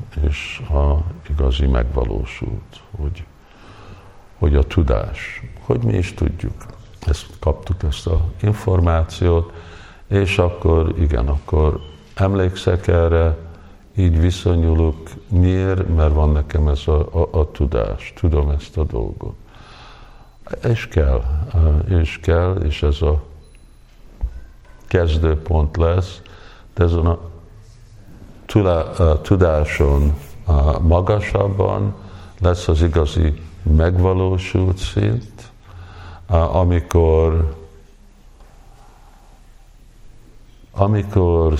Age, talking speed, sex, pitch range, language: 50-69, 90 wpm, male, 75-95 Hz, Hungarian